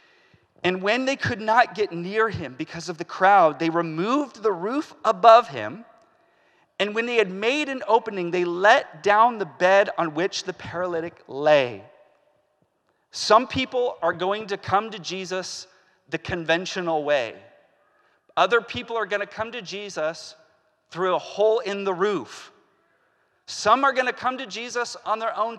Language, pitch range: English, 190-245 Hz